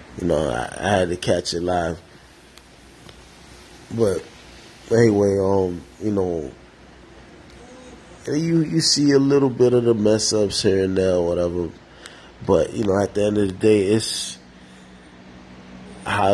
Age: 20-39